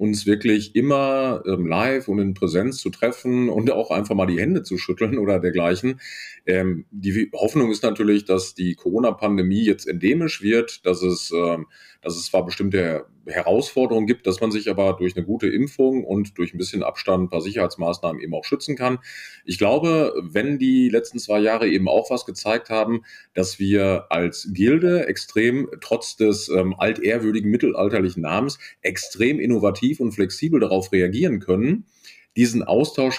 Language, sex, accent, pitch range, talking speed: German, male, German, 95-125 Hz, 155 wpm